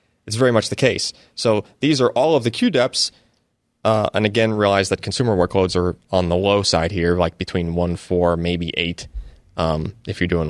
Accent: American